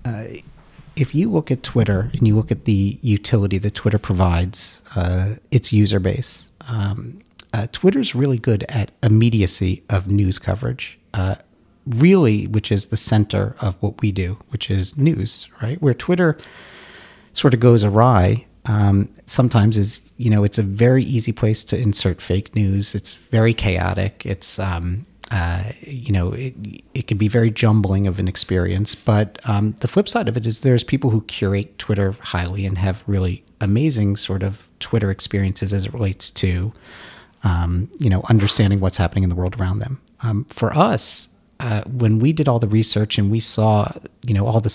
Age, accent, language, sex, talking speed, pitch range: 40-59, American, English, male, 180 wpm, 95-115 Hz